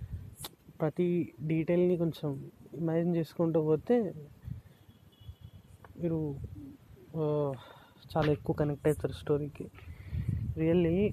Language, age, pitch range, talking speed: Telugu, 20-39, 130-175 Hz, 70 wpm